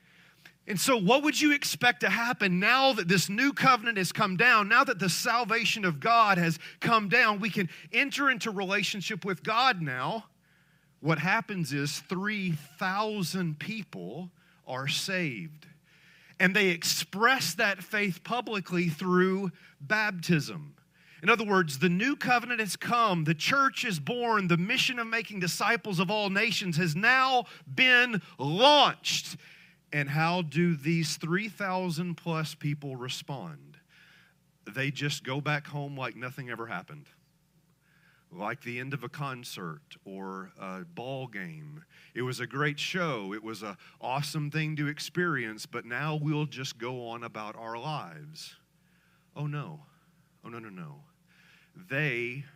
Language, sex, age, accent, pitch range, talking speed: English, male, 40-59, American, 150-195 Hz, 145 wpm